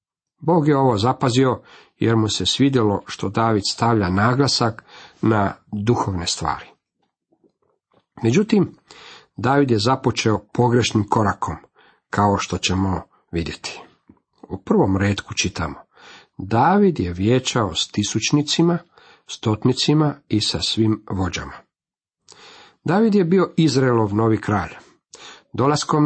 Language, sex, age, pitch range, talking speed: Croatian, male, 50-69, 100-135 Hz, 105 wpm